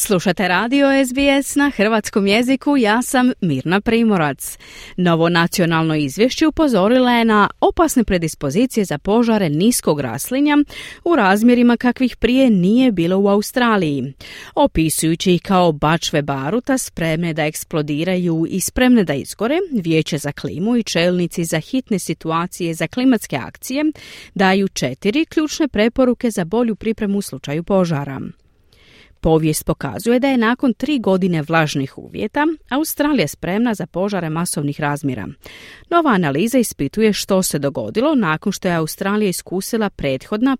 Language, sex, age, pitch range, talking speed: Croatian, female, 30-49, 165-240 Hz, 130 wpm